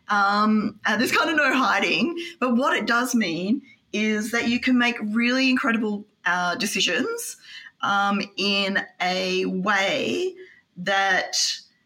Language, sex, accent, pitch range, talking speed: English, female, Australian, 195-255 Hz, 125 wpm